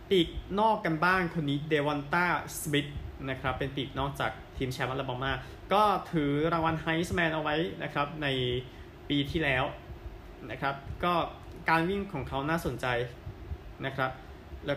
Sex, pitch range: male, 120-160 Hz